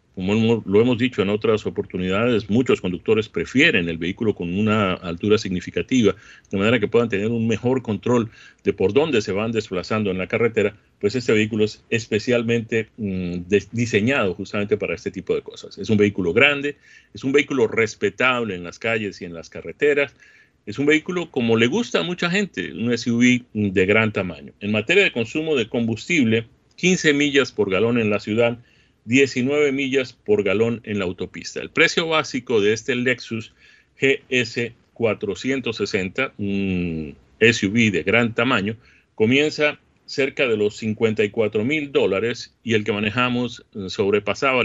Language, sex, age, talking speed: Spanish, male, 40-59, 160 wpm